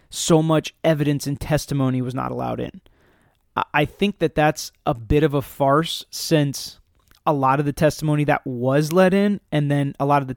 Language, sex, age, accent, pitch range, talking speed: English, male, 20-39, American, 135-155 Hz, 195 wpm